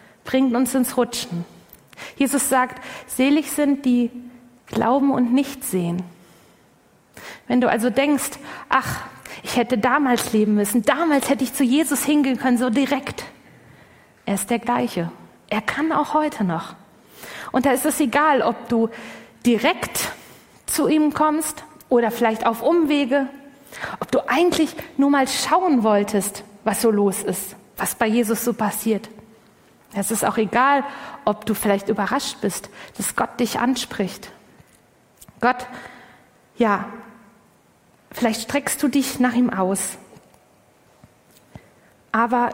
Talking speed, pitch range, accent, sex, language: 135 wpm, 220-275 Hz, German, female, German